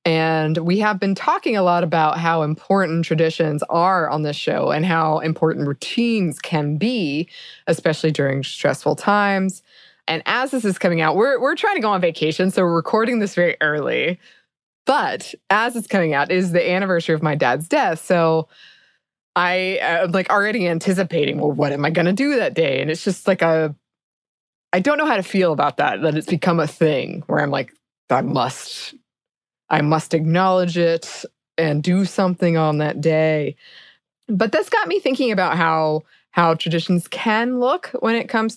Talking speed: 185 wpm